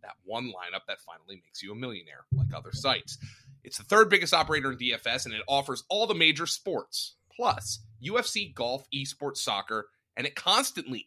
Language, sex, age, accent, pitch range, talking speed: English, male, 30-49, American, 130-205 Hz, 185 wpm